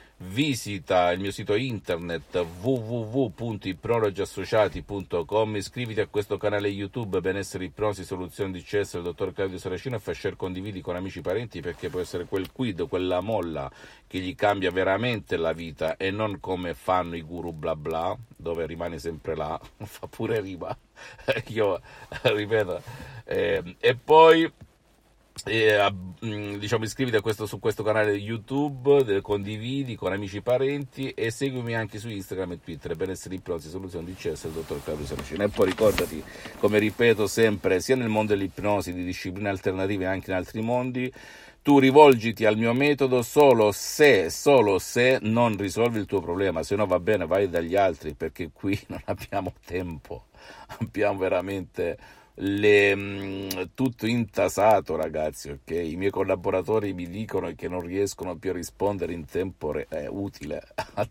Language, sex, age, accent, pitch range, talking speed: Italian, male, 50-69, native, 90-115 Hz, 155 wpm